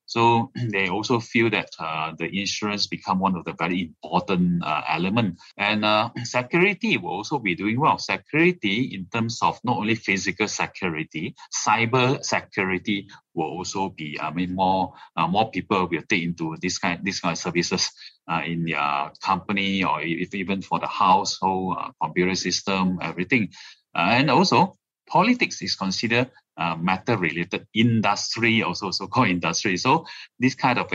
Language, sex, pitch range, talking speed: English, male, 90-115 Hz, 165 wpm